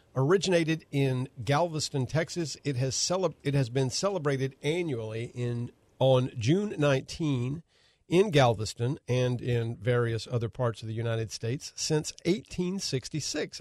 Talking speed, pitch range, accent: 130 wpm, 120-145 Hz, American